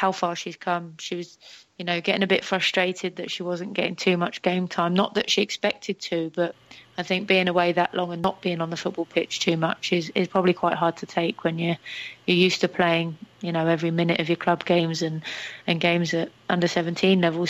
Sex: female